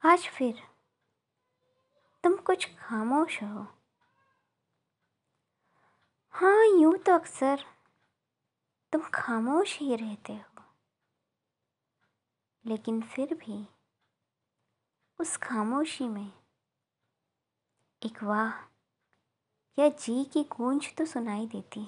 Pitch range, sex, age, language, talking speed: 215-315 Hz, male, 20-39, Hindi, 80 wpm